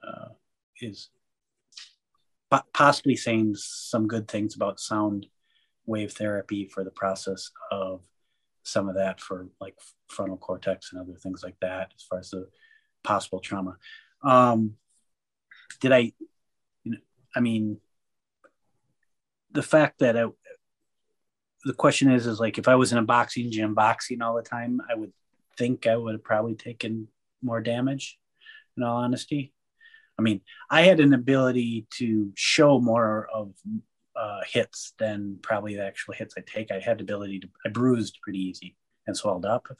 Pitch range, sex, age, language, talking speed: 100-125 Hz, male, 30-49, English, 160 wpm